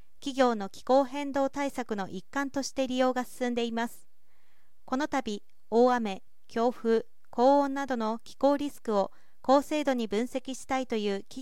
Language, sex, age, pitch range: Japanese, female, 40-59, 220-275 Hz